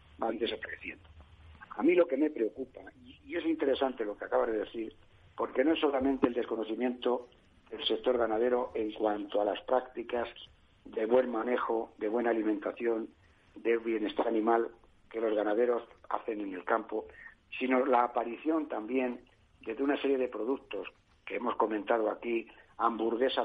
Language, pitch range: Spanish, 110-140 Hz